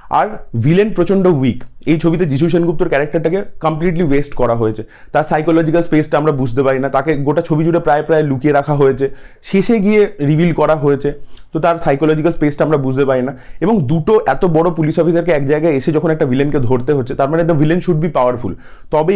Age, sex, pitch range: 30-49, male, 140-180 Hz